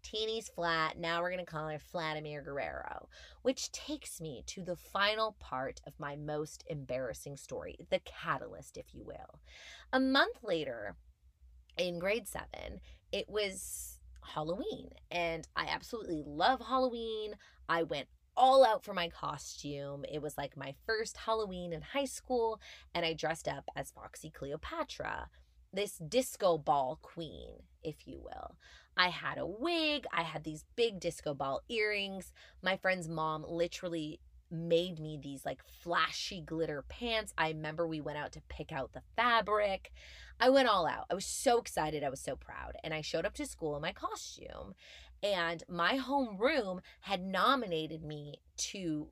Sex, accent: female, American